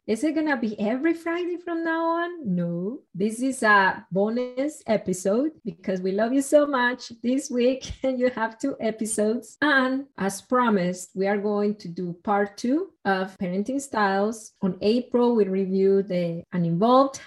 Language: English